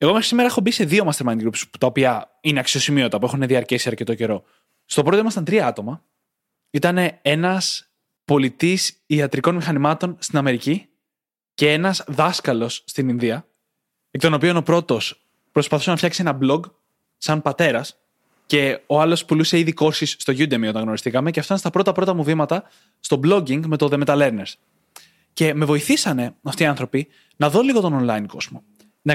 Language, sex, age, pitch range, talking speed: Greek, male, 20-39, 135-175 Hz, 175 wpm